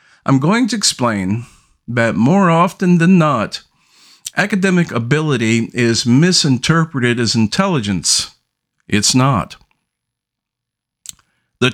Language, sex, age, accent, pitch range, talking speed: English, male, 50-69, American, 120-165 Hz, 90 wpm